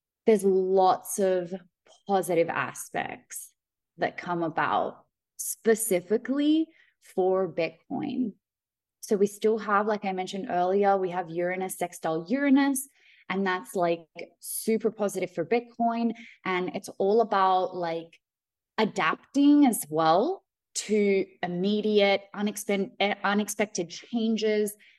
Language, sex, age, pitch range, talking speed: English, female, 20-39, 175-225 Hz, 105 wpm